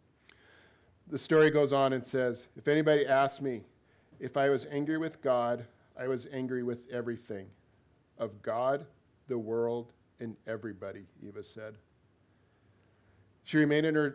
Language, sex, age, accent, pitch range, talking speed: English, male, 50-69, American, 105-135 Hz, 140 wpm